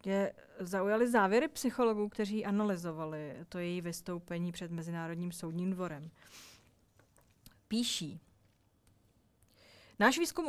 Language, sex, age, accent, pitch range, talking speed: Czech, female, 30-49, native, 175-230 Hz, 90 wpm